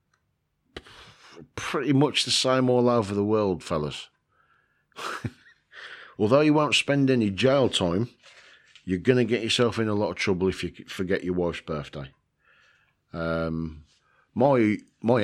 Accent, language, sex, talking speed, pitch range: British, English, male, 140 wpm, 85-125 Hz